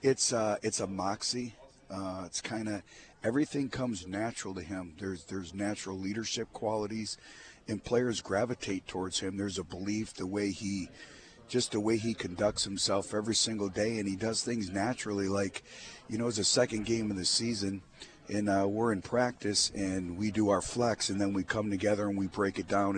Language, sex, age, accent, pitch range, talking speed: English, male, 40-59, American, 100-115 Hz, 195 wpm